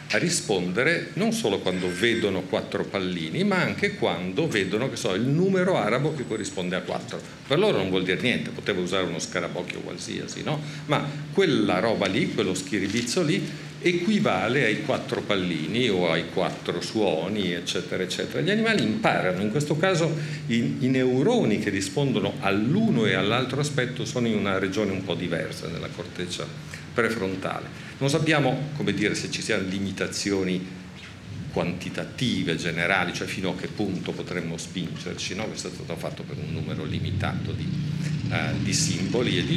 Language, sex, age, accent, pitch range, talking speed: Italian, male, 50-69, native, 95-145 Hz, 160 wpm